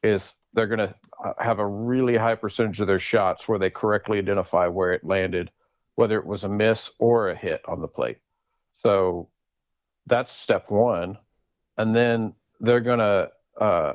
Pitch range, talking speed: 100-115 Hz, 165 wpm